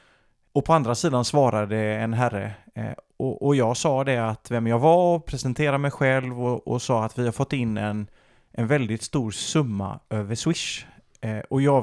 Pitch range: 115-140 Hz